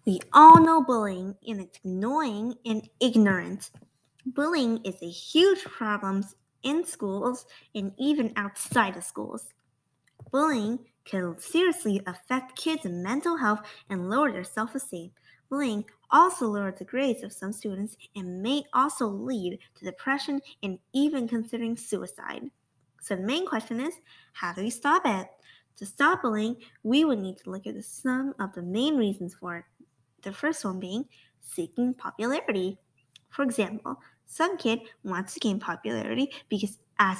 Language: English